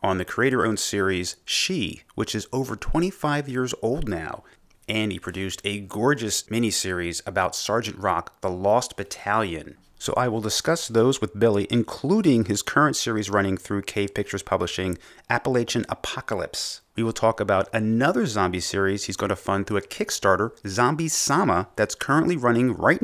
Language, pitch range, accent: English, 95-120 Hz, American